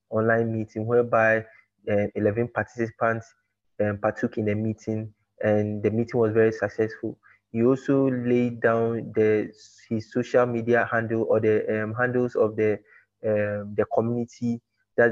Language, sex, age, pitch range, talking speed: English, male, 20-39, 105-115 Hz, 145 wpm